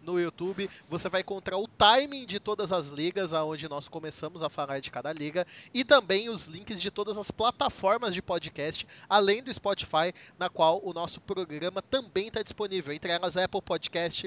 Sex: male